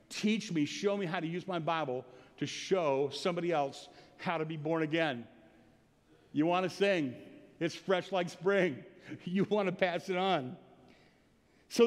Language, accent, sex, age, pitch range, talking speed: English, American, male, 50-69, 160-210 Hz, 165 wpm